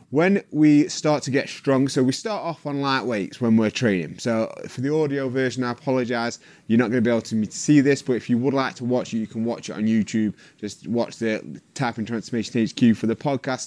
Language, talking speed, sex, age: English, 235 wpm, male, 20-39